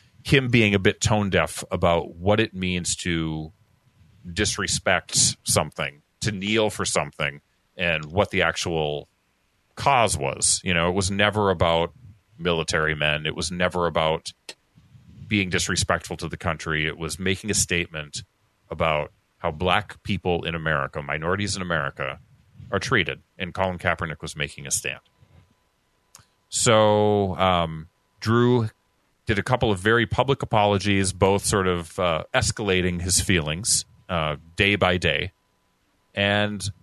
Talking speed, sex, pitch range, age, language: 140 wpm, male, 85-105 Hz, 30-49, English